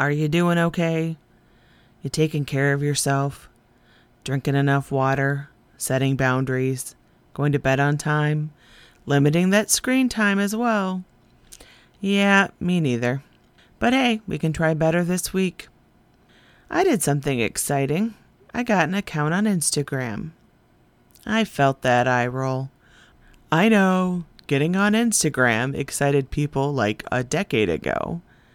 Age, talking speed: 30-49, 130 wpm